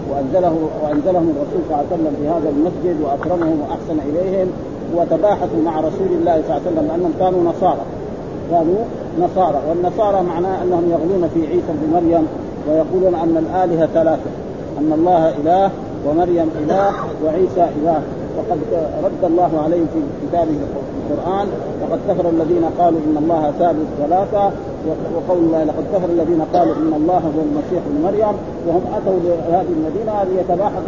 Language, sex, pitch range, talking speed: Arabic, male, 160-185 Hz, 150 wpm